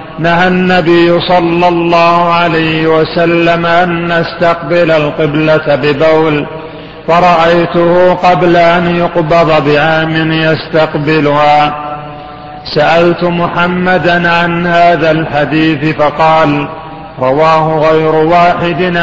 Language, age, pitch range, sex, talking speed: Arabic, 40-59, 155-175 Hz, male, 80 wpm